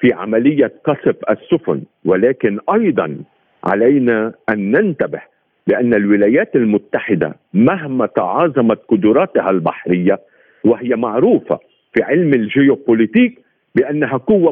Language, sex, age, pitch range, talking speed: Arabic, male, 50-69, 125-200 Hz, 95 wpm